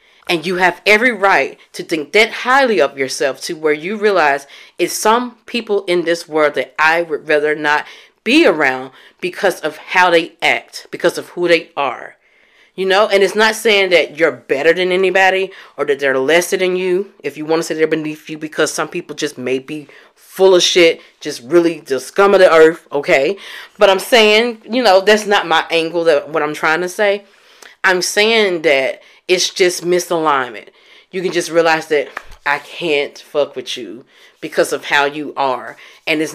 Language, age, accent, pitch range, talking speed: English, 30-49, American, 155-205 Hz, 195 wpm